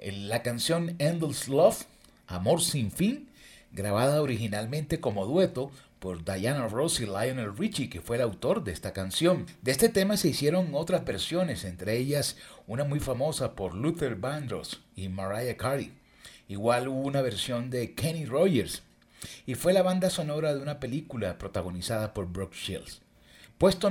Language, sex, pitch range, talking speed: Spanish, male, 115-165 Hz, 155 wpm